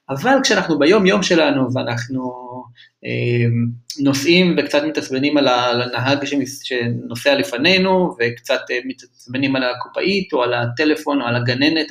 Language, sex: Hebrew, male